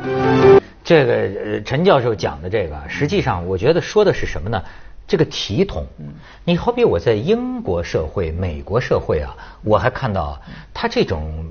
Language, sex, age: Chinese, male, 50-69